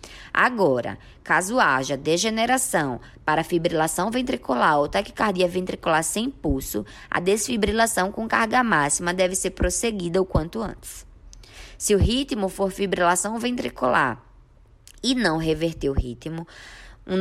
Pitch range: 160-215 Hz